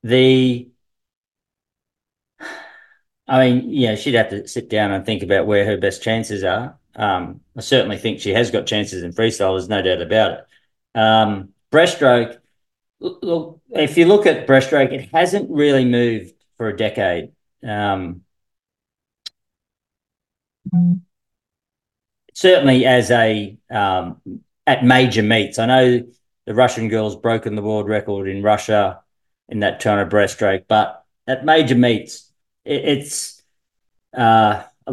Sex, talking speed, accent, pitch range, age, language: male, 135 wpm, Australian, 105-130 Hz, 40-59, English